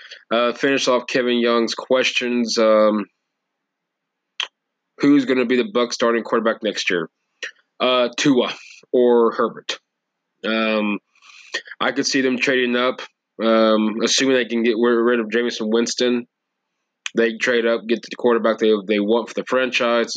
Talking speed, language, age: 145 wpm, English, 20-39